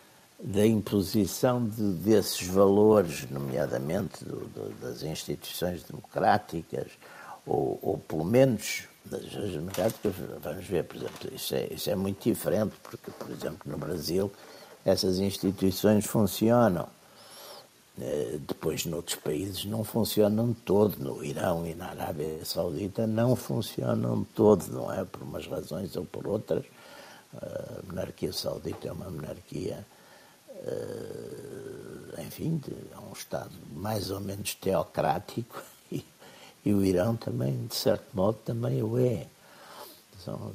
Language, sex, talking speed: Portuguese, male, 125 wpm